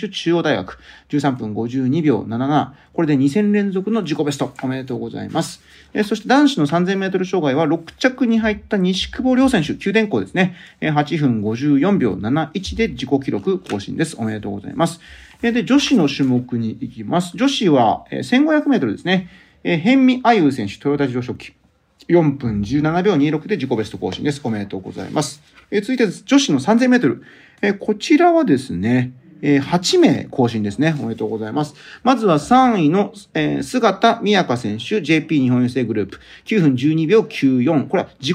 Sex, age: male, 40-59